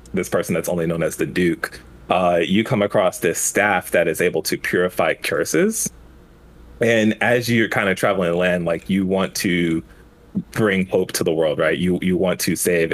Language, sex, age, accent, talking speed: English, male, 30-49, American, 200 wpm